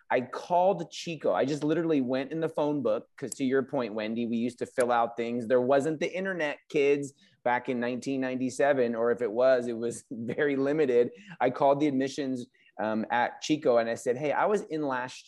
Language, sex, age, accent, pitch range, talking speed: English, male, 30-49, American, 115-160 Hz, 210 wpm